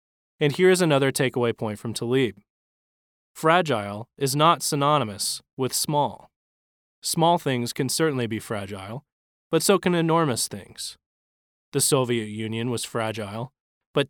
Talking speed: 130 wpm